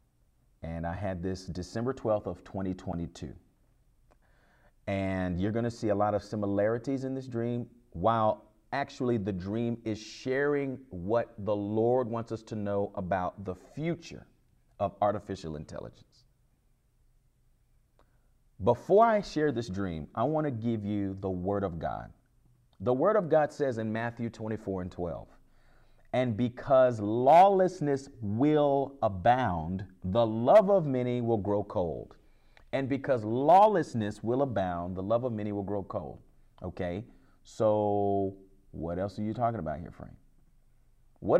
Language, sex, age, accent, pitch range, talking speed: English, male, 40-59, American, 100-135 Hz, 140 wpm